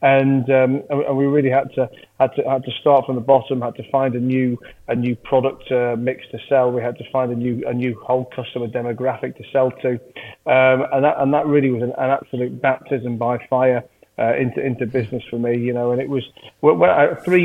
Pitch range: 120-130 Hz